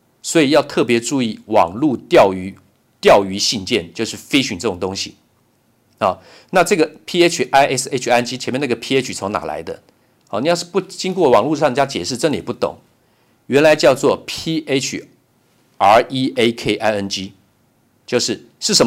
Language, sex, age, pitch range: Chinese, male, 50-69, 120-175 Hz